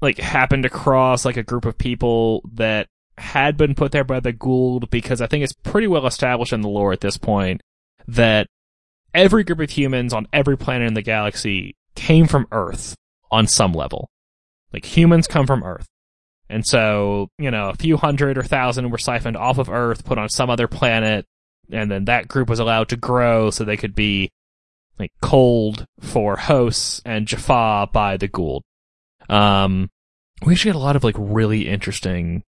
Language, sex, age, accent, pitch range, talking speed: English, male, 20-39, American, 105-130 Hz, 185 wpm